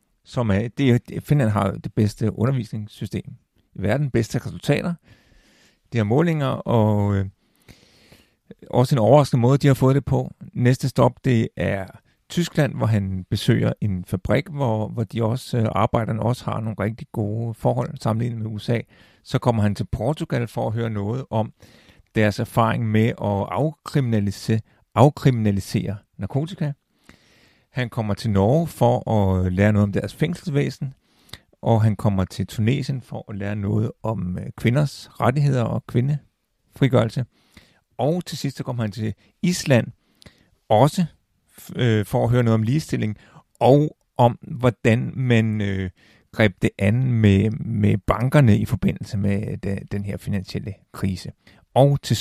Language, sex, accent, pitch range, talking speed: Danish, male, native, 105-130 Hz, 145 wpm